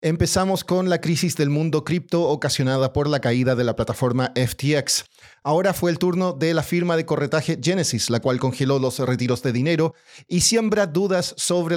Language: Spanish